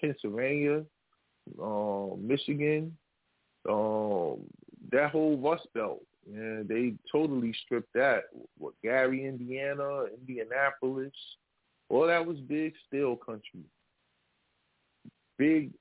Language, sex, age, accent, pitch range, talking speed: English, male, 20-39, American, 115-140 Hz, 85 wpm